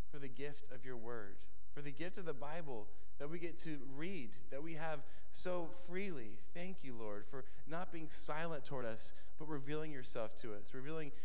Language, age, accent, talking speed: English, 20-39, American, 195 wpm